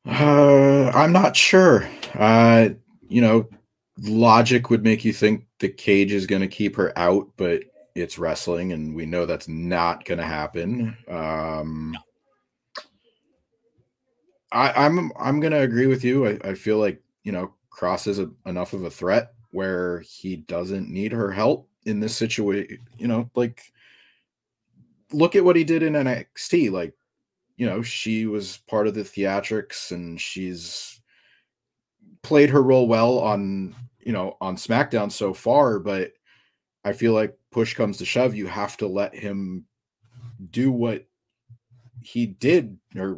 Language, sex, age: English, male, 30-49